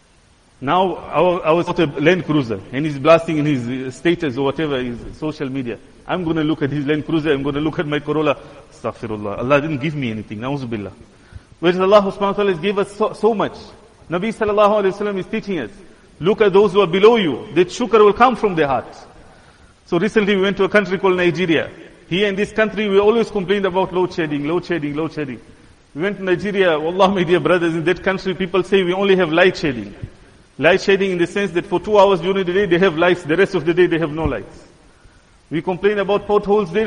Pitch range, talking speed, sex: 150-200 Hz, 230 wpm, male